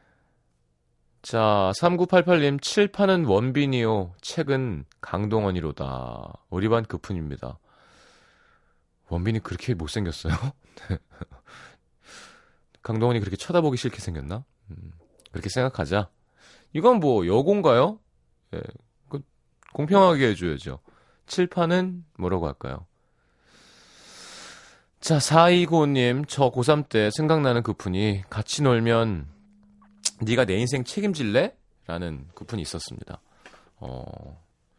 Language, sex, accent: Korean, male, native